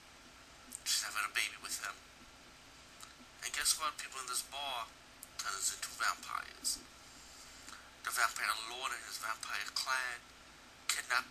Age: 50-69